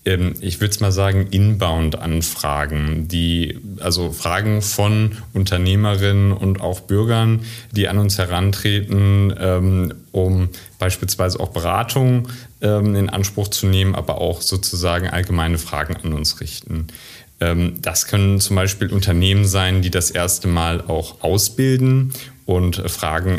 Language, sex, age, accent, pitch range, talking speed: German, male, 30-49, German, 90-105 Hz, 120 wpm